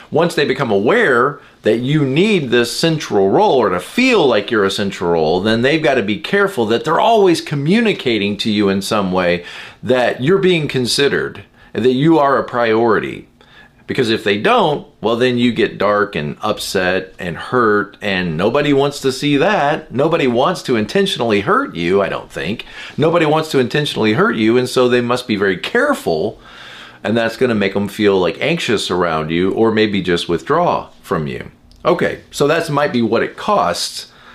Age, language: 40-59, English